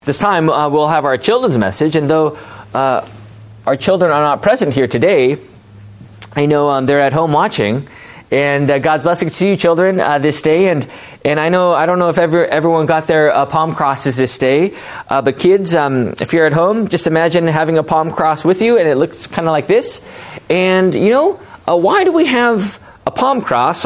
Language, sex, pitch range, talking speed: English, male, 145-210 Hz, 210 wpm